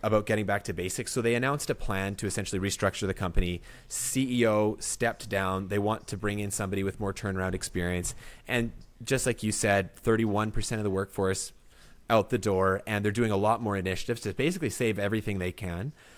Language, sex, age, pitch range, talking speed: English, male, 30-49, 100-125 Hz, 200 wpm